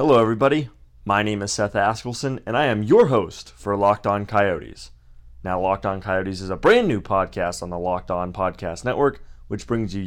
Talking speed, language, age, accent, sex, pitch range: 205 wpm, English, 30-49, American, male, 95-120 Hz